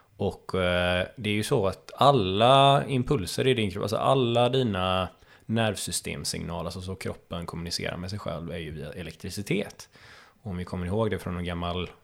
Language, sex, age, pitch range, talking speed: Swedish, male, 20-39, 90-110 Hz, 175 wpm